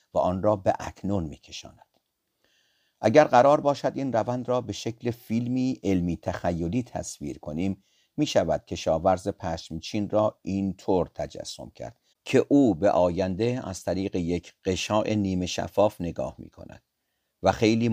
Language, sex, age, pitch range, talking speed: Persian, male, 50-69, 85-115 Hz, 145 wpm